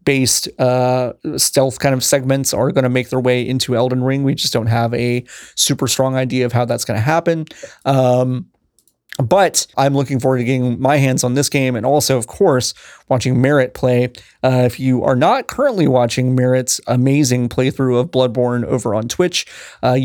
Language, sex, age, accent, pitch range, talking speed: English, male, 30-49, American, 120-140 Hz, 190 wpm